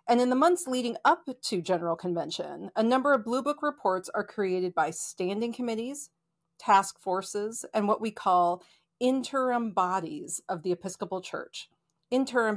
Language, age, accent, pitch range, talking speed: English, 40-59, American, 180-245 Hz, 160 wpm